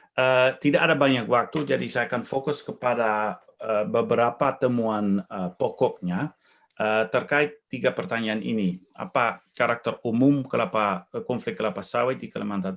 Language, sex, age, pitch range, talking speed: Indonesian, male, 40-59, 105-140 Hz, 135 wpm